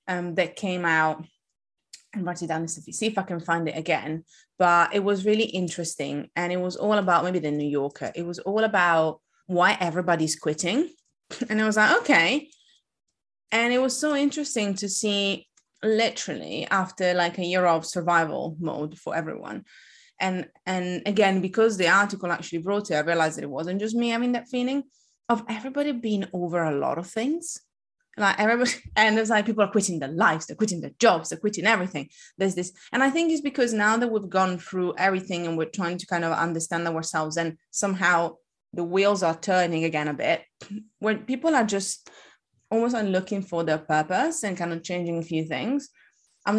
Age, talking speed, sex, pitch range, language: 20-39, 195 wpm, female, 170-215 Hz, English